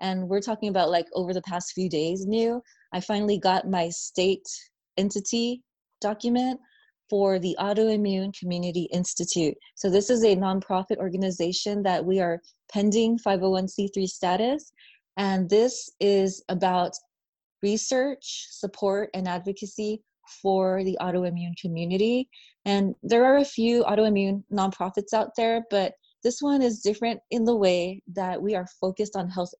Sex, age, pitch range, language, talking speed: female, 20-39, 180-210 Hz, English, 140 wpm